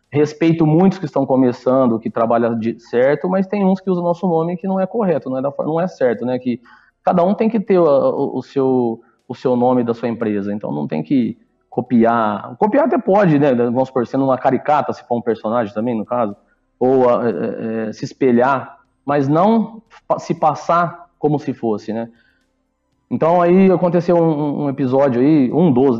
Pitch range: 115-145 Hz